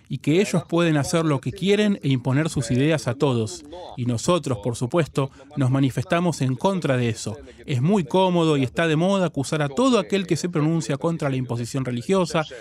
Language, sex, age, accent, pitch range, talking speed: Spanish, male, 30-49, Argentinian, 135-170 Hz, 200 wpm